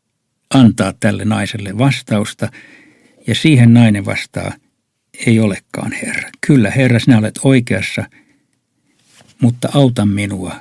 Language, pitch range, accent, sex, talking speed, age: Finnish, 105-120 Hz, native, male, 105 wpm, 60-79